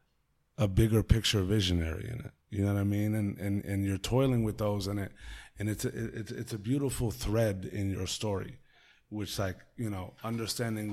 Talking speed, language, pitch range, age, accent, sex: 190 wpm, English, 105-125 Hz, 20-39, American, male